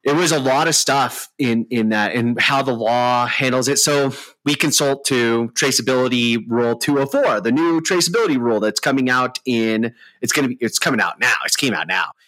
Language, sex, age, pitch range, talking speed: English, male, 30-49, 105-130 Hz, 205 wpm